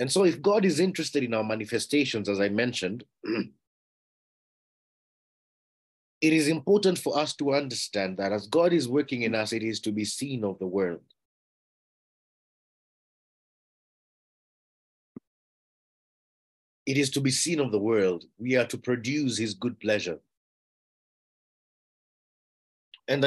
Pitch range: 105-140 Hz